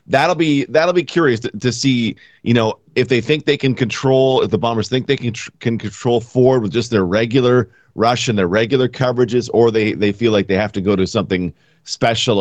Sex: male